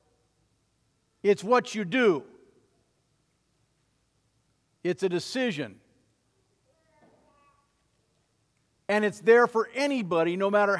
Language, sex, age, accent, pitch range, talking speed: English, male, 50-69, American, 150-230 Hz, 80 wpm